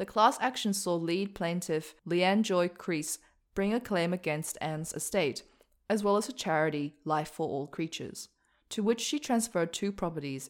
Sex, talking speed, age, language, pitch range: female, 170 wpm, 20-39, English, 160-205 Hz